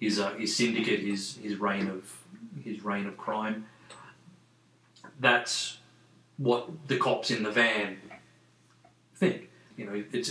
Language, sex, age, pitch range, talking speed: English, male, 30-49, 110-125 Hz, 135 wpm